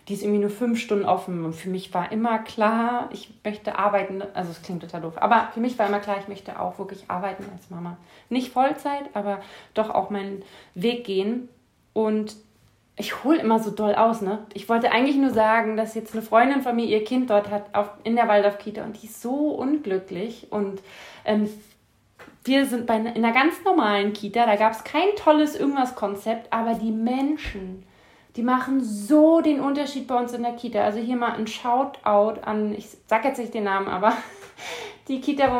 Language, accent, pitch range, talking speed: German, German, 205-245 Hz, 200 wpm